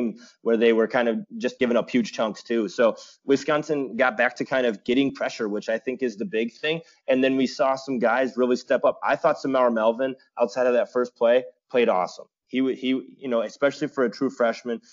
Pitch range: 115-130 Hz